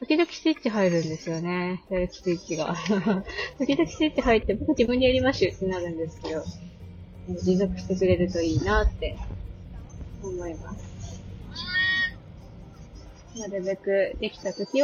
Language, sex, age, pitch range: Japanese, female, 20-39, 170-240 Hz